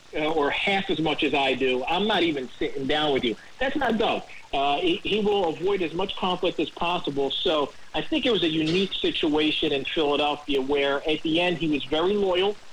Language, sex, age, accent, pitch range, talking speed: English, male, 40-59, American, 145-200 Hz, 210 wpm